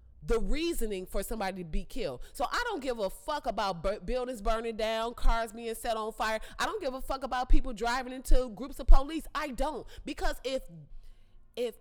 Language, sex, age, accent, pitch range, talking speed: English, female, 30-49, American, 185-300 Hz, 205 wpm